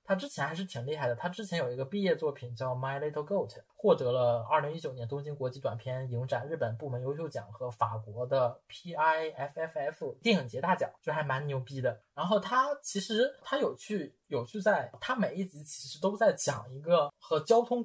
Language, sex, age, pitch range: Chinese, male, 20-39, 125-180 Hz